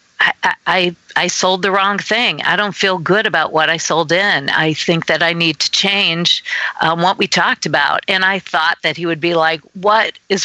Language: English